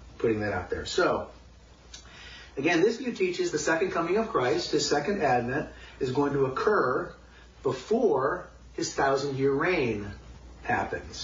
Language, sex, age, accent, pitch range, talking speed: English, male, 40-59, American, 105-150 Hz, 140 wpm